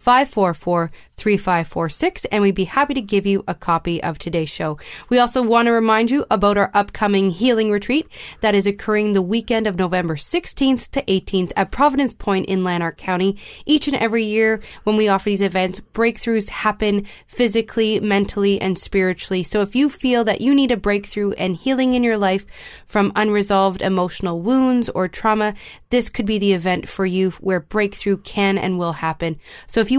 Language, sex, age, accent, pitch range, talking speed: English, female, 20-39, American, 185-230 Hz, 180 wpm